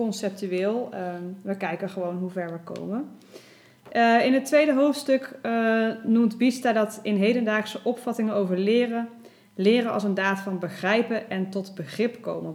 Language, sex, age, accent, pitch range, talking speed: Dutch, female, 20-39, Dutch, 190-230 Hz, 145 wpm